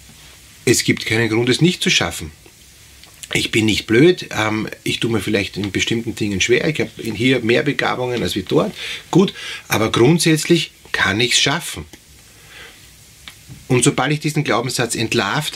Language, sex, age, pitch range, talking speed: German, male, 30-49, 115-155 Hz, 160 wpm